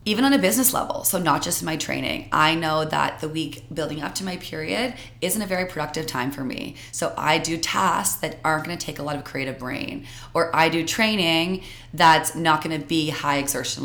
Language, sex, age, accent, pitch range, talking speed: English, female, 20-39, American, 140-170 Hz, 225 wpm